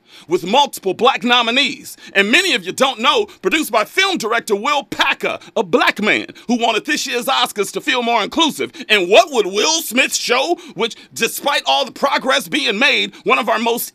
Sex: male